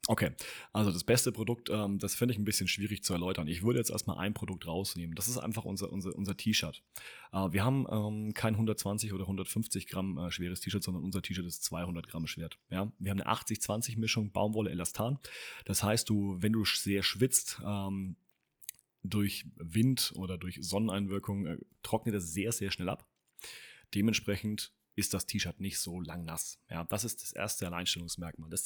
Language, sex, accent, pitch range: German, male, German, 95-115 Hz